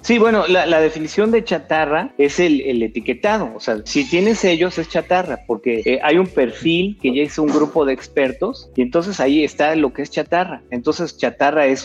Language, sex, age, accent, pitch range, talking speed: Spanish, male, 40-59, Mexican, 125-165 Hz, 210 wpm